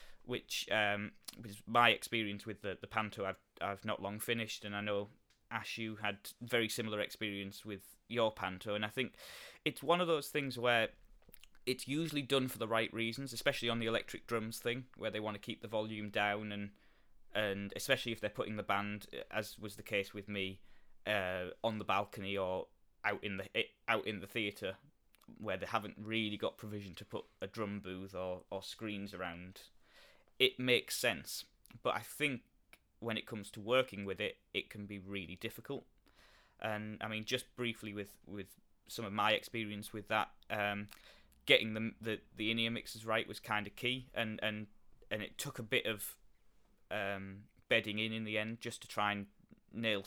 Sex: male